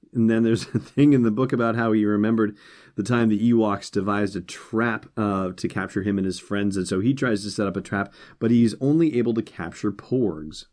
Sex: male